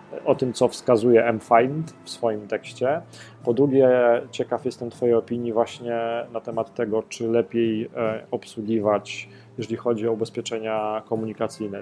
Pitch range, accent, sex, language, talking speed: 110-125 Hz, native, male, Polish, 130 wpm